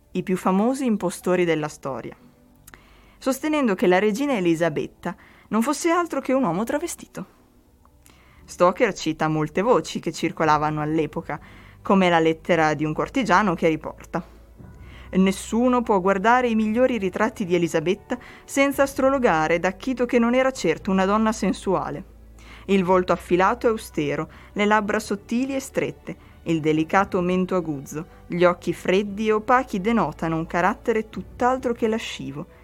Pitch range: 165-225 Hz